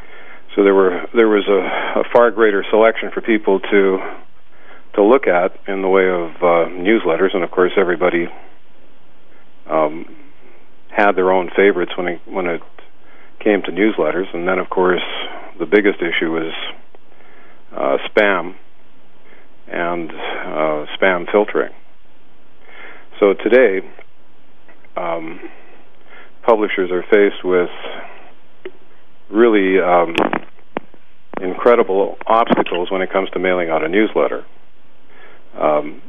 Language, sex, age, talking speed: English, male, 50-69, 120 wpm